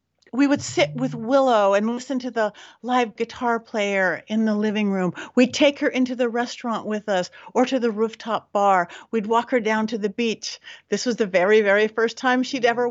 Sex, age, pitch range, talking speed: female, 50-69, 205-255 Hz, 210 wpm